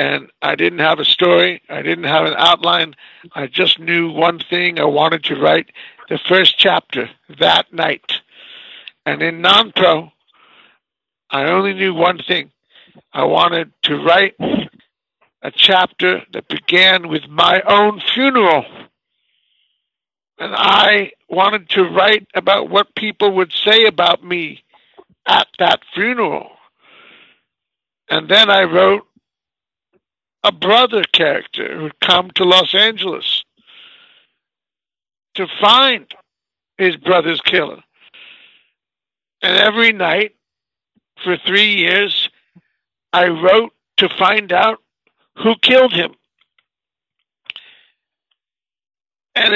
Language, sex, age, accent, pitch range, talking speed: English, male, 60-79, American, 175-205 Hz, 110 wpm